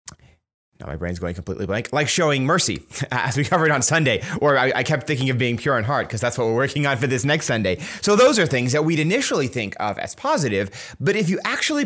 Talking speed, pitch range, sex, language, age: 245 wpm, 115-150 Hz, male, English, 30-49